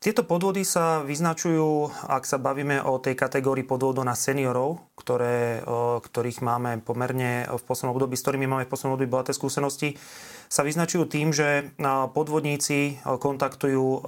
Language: Slovak